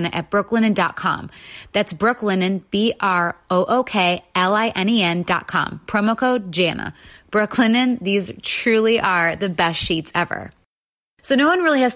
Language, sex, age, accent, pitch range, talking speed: English, female, 30-49, American, 180-230 Hz, 105 wpm